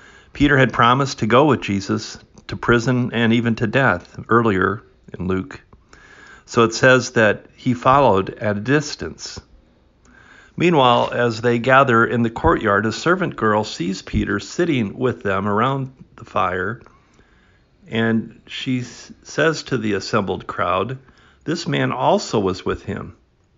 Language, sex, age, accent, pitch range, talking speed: English, male, 50-69, American, 100-120 Hz, 145 wpm